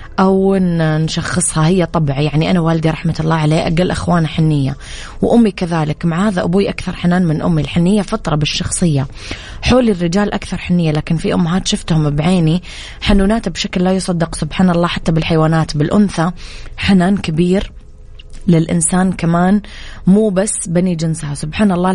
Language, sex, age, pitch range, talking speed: English, female, 20-39, 155-185 Hz, 145 wpm